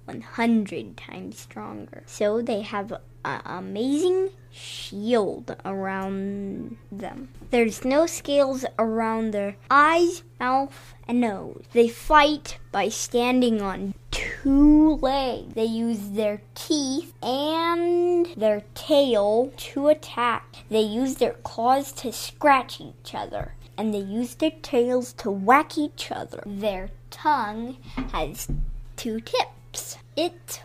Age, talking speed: 20-39, 115 wpm